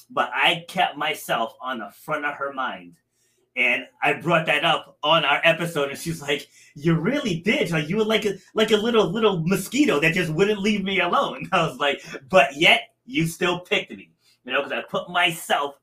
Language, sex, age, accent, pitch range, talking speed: English, male, 30-49, American, 140-180 Hz, 205 wpm